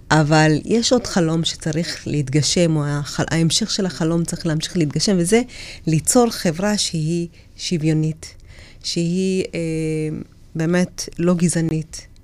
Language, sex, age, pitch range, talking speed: Hebrew, female, 30-49, 155-200 Hz, 120 wpm